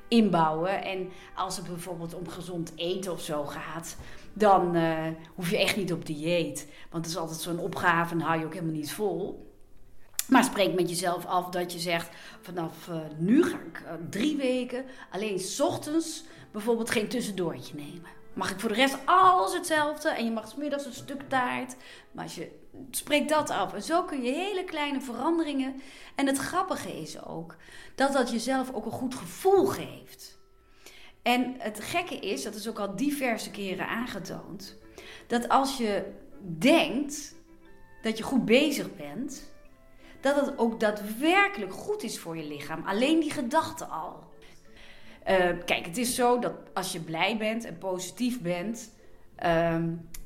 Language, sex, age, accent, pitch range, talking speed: Dutch, female, 30-49, Dutch, 175-270 Hz, 170 wpm